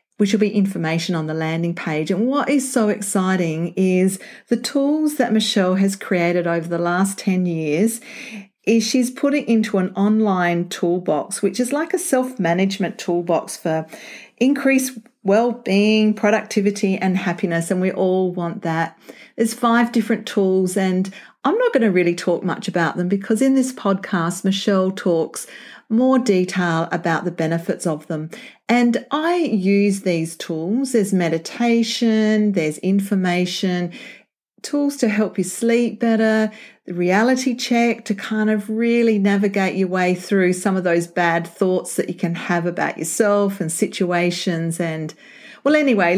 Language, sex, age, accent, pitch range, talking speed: English, female, 40-59, Australian, 175-225 Hz, 155 wpm